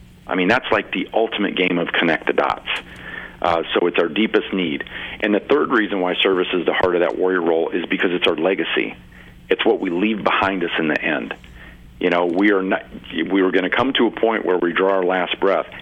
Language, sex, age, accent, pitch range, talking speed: English, male, 50-69, American, 85-100 Hz, 235 wpm